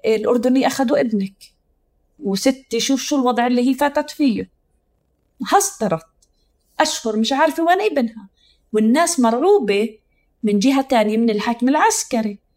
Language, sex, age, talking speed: Arabic, female, 30-49, 120 wpm